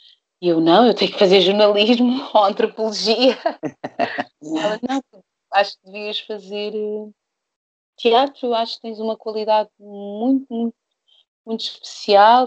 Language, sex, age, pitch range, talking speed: Portuguese, female, 30-49, 175-230 Hz, 120 wpm